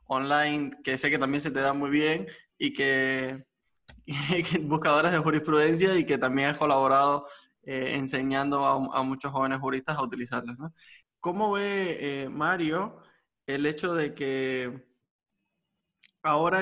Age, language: 20-39, Spanish